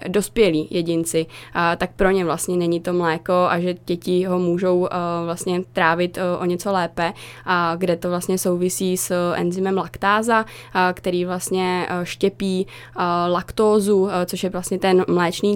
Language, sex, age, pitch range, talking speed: Czech, female, 20-39, 180-200 Hz, 140 wpm